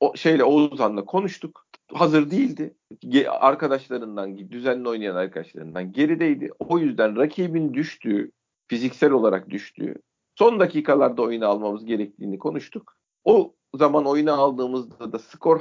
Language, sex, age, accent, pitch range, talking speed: Turkish, male, 40-59, native, 120-160 Hz, 115 wpm